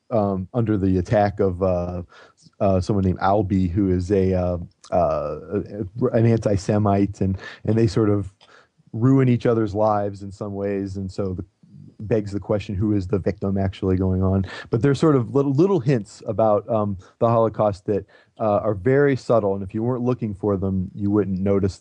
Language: English